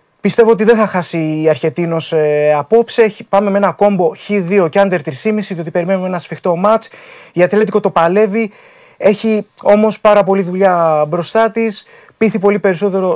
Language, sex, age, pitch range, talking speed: Greek, male, 20-39, 150-195 Hz, 165 wpm